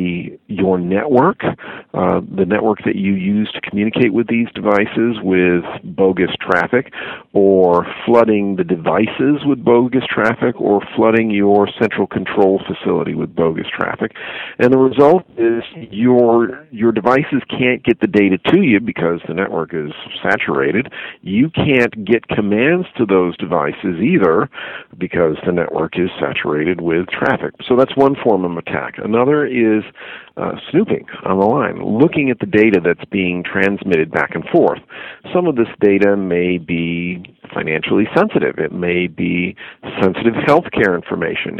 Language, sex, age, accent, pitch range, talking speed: English, male, 50-69, American, 95-115 Hz, 145 wpm